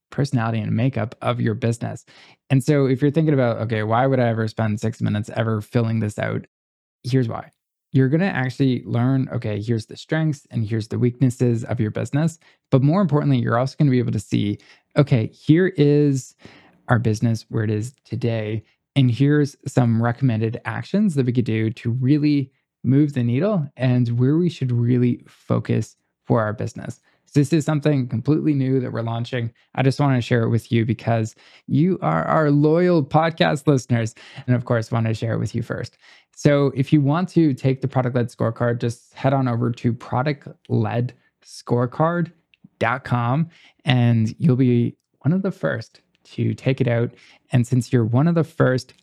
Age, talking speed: 20-39, 185 wpm